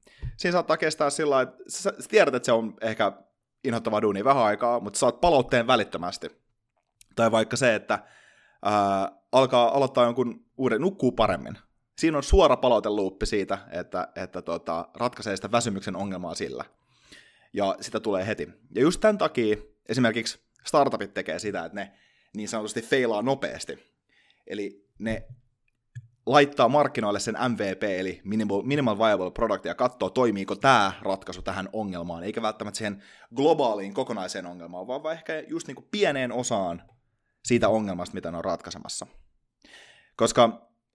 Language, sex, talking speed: Finnish, male, 145 wpm